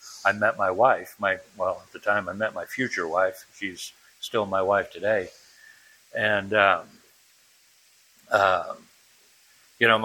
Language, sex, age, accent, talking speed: English, male, 60-79, American, 145 wpm